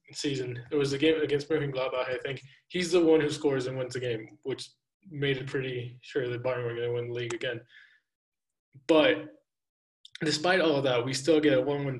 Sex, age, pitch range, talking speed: male, 20-39, 130-155 Hz, 215 wpm